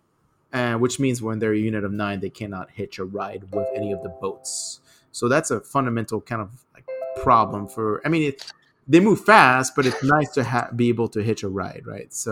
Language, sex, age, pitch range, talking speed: English, male, 30-49, 110-135 Hz, 215 wpm